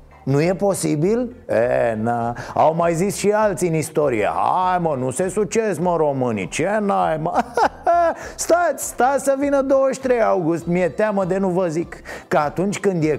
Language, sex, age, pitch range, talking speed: Romanian, male, 30-49, 130-185 Hz, 175 wpm